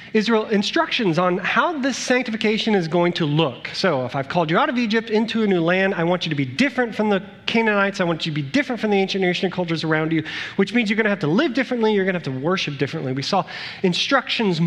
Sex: male